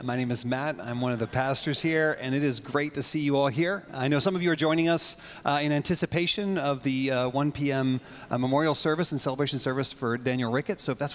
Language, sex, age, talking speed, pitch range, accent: English, male, 30-49, 250 wpm, 135-175 Hz, American